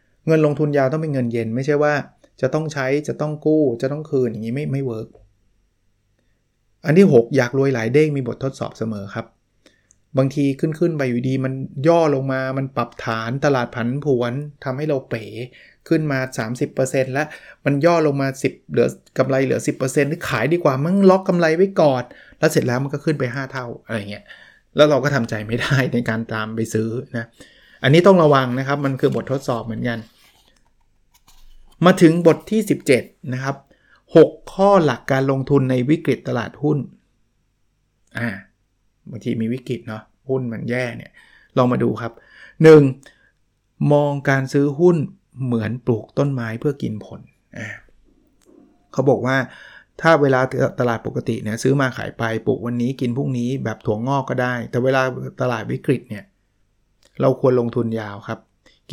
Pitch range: 115-145 Hz